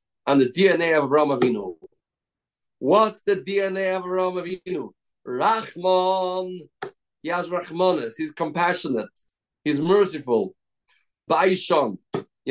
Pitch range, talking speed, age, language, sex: 145-190 Hz, 100 wpm, 40-59, English, male